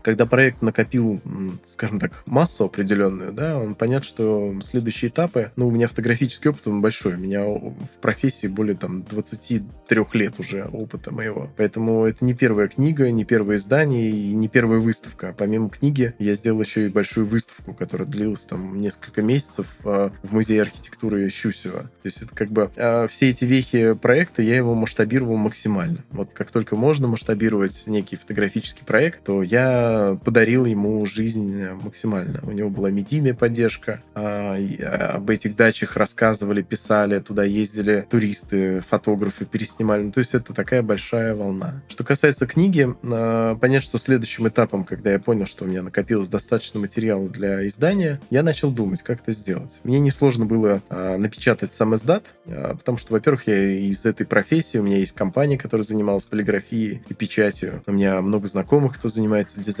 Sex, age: male, 20-39